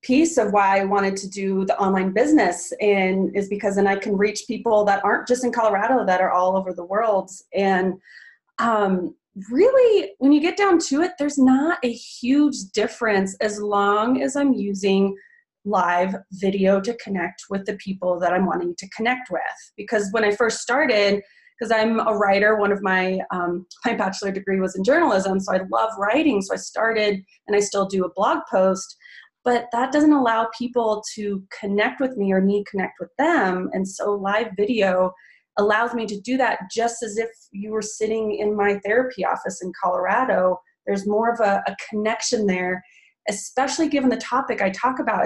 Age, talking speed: 20-39, 190 wpm